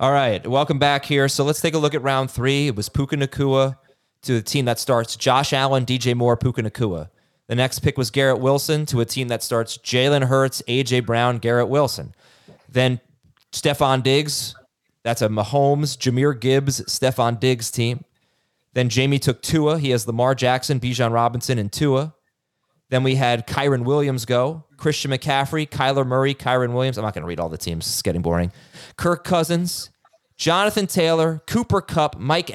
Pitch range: 125-165 Hz